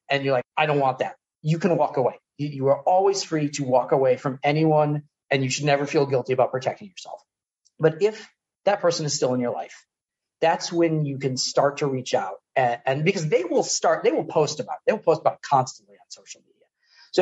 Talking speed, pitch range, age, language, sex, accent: 235 wpm, 140-190 Hz, 40-59, English, male, American